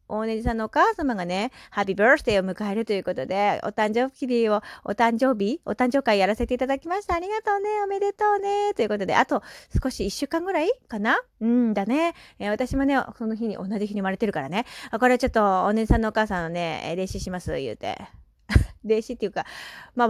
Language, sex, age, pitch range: Japanese, female, 20-39, 185-260 Hz